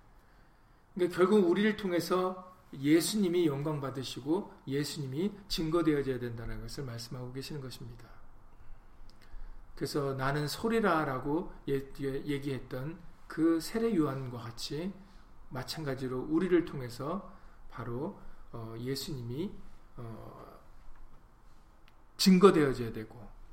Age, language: 40-59, Korean